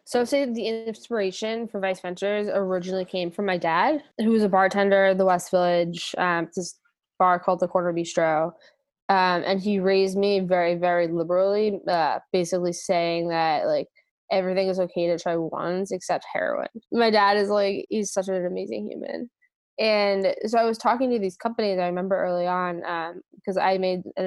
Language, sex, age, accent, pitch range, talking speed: English, female, 20-39, American, 180-205 Hz, 190 wpm